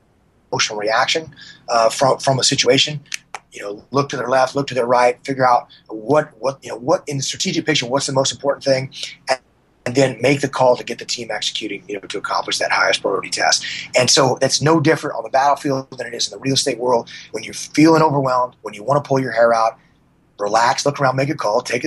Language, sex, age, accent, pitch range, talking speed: English, male, 30-49, American, 125-155 Hz, 240 wpm